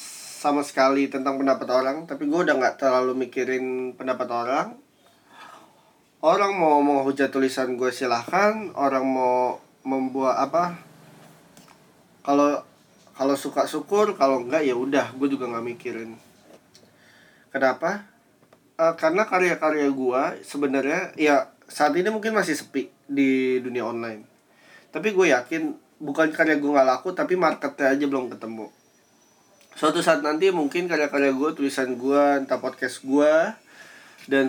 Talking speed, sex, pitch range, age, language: 130 wpm, male, 130-160 Hz, 20-39, Indonesian